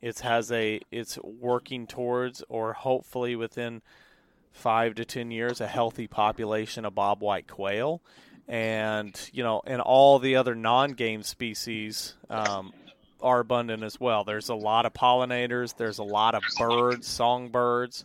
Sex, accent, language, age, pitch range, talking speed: male, American, English, 30-49, 110-125 Hz, 145 wpm